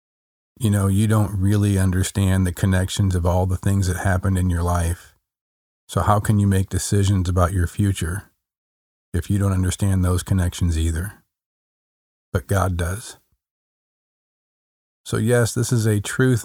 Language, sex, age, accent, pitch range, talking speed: English, male, 40-59, American, 90-105 Hz, 155 wpm